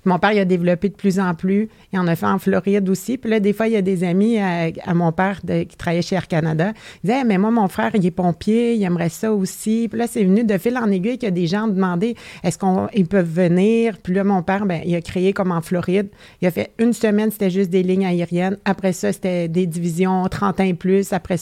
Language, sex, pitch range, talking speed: French, female, 180-205 Hz, 290 wpm